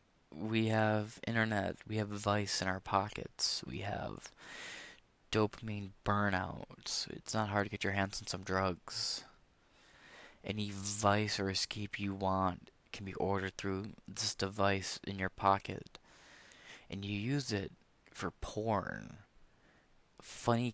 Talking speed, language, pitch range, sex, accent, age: 130 wpm, English, 95-110 Hz, male, American, 20-39